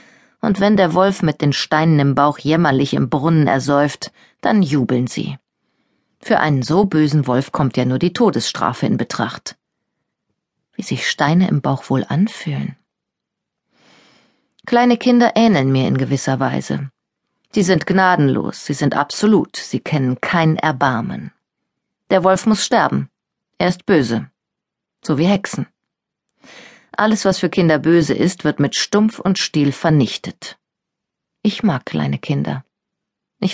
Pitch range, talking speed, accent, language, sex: 140-185 Hz, 140 wpm, German, German, female